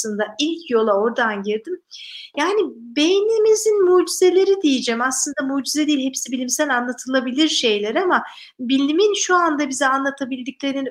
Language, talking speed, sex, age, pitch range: Turkish, 115 wpm, female, 50-69, 230-300 Hz